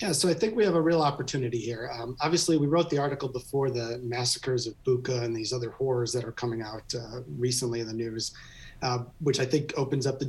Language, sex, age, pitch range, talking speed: English, male, 30-49, 120-150 Hz, 240 wpm